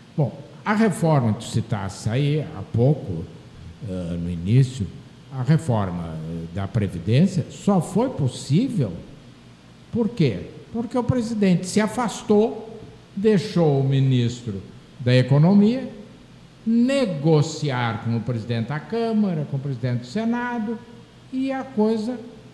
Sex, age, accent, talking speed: male, 60-79, Brazilian, 115 wpm